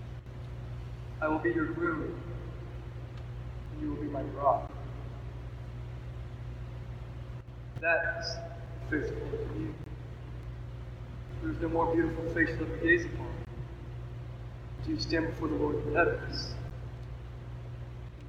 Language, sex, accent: English, male, American